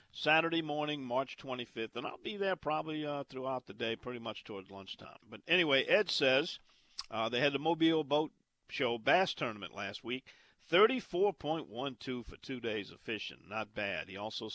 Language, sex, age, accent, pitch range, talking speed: English, male, 50-69, American, 110-155 Hz, 175 wpm